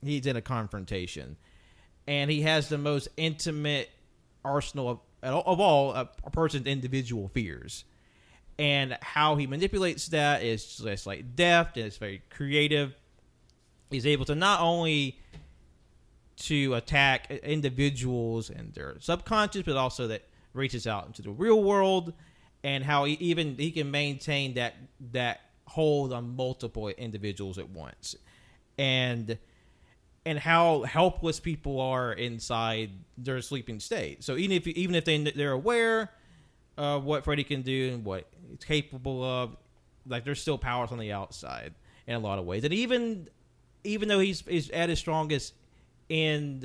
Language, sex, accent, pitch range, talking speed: English, male, American, 115-150 Hz, 155 wpm